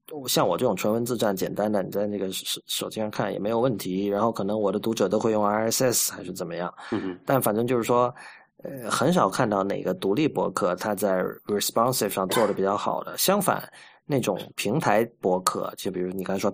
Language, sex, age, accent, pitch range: Chinese, male, 20-39, native, 100-120 Hz